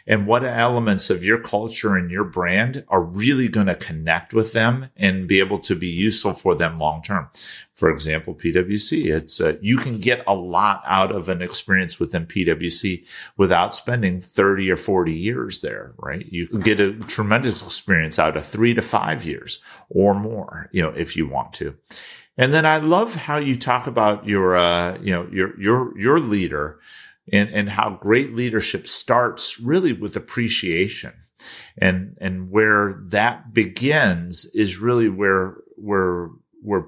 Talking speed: 170 wpm